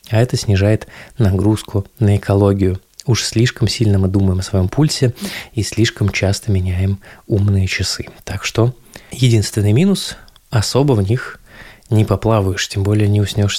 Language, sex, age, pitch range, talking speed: Russian, male, 20-39, 100-120 Hz, 145 wpm